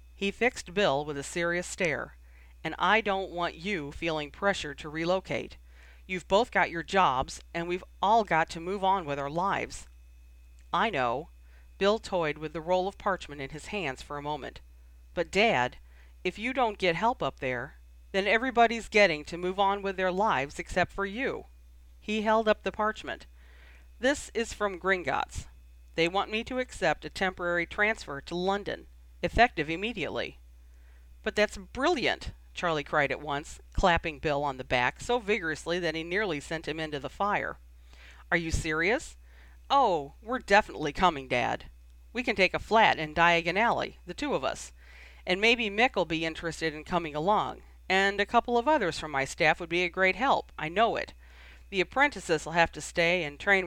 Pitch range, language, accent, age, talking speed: 125-195 Hz, English, American, 40-59, 180 wpm